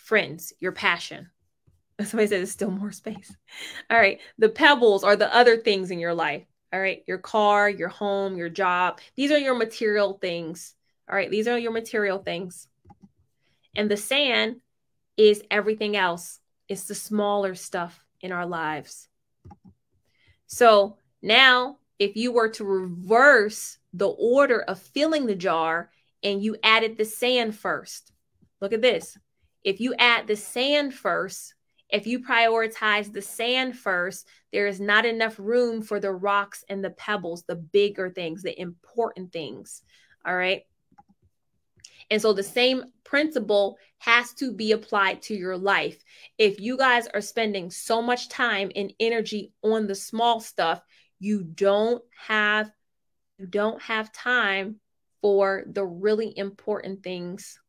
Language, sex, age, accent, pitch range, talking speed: English, female, 20-39, American, 190-225 Hz, 150 wpm